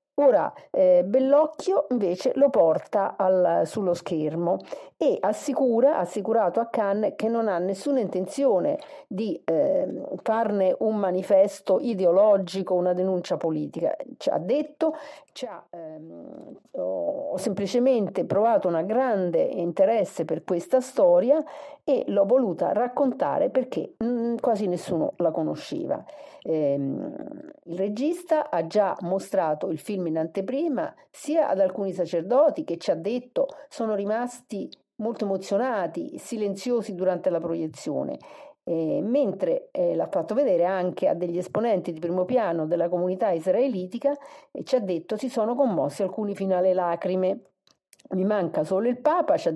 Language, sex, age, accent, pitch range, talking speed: Italian, female, 50-69, native, 185-285 Hz, 135 wpm